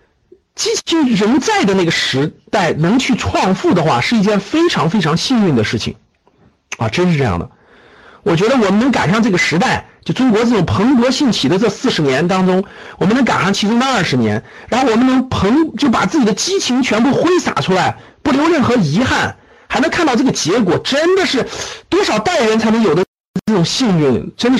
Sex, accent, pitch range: male, native, 170-265 Hz